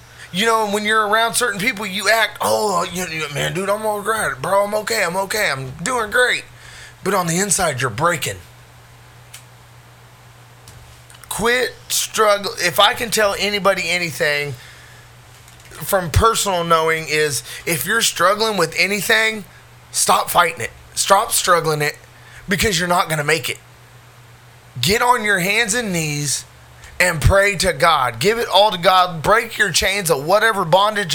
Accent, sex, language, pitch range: American, male, English, 155-215 Hz